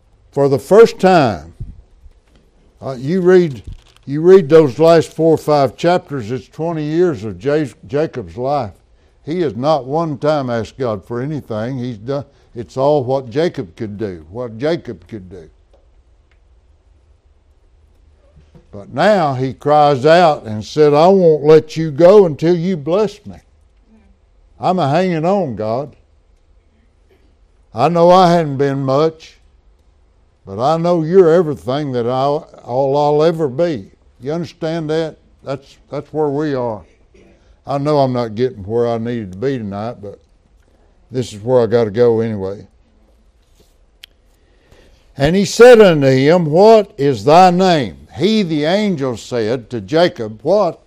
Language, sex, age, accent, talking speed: English, male, 60-79, American, 145 wpm